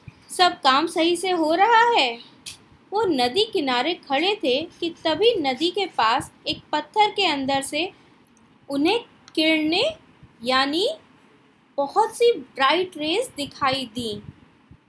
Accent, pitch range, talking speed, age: native, 270-370 Hz, 125 wpm, 20-39